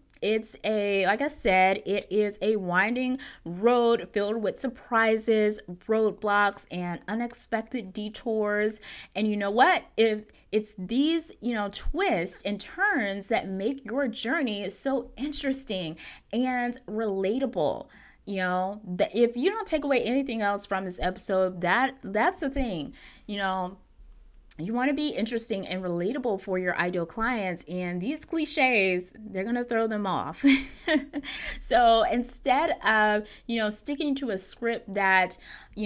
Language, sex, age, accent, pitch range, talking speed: English, female, 20-39, American, 190-260 Hz, 145 wpm